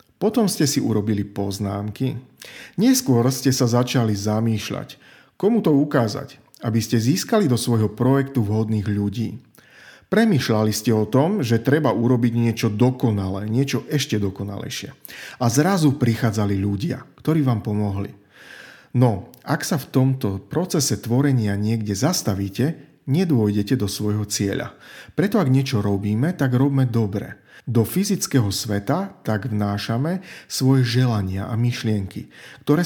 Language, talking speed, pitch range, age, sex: Slovak, 130 wpm, 105-135 Hz, 40-59, male